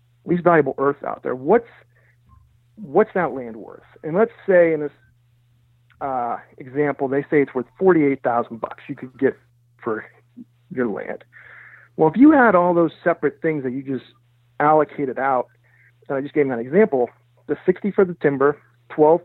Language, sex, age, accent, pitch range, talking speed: English, male, 40-59, American, 120-160 Hz, 170 wpm